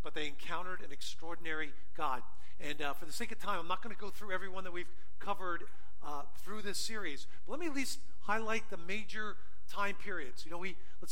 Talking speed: 225 wpm